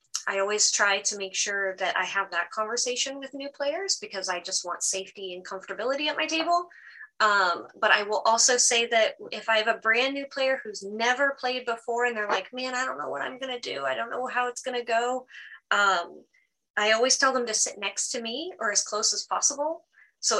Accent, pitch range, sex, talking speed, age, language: American, 205-265 Hz, female, 225 wpm, 20-39, English